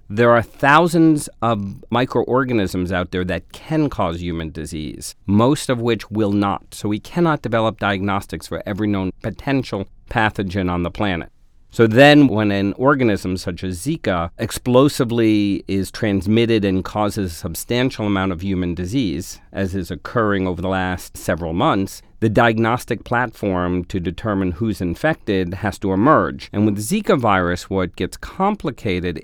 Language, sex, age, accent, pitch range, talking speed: English, male, 40-59, American, 95-115 Hz, 150 wpm